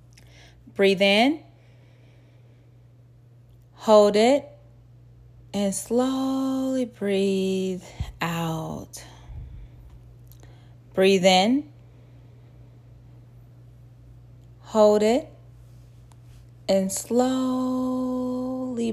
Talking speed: 45 wpm